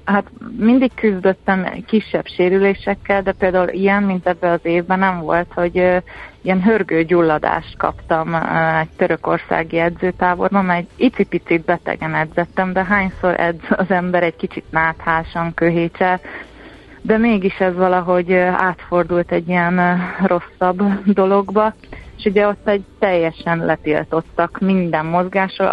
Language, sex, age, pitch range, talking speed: Hungarian, female, 30-49, 170-195 Hz, 125 wpm